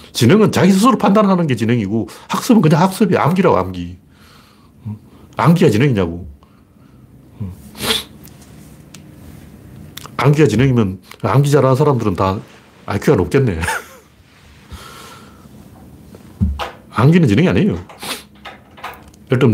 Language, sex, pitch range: Korean, male, 105-170 Hz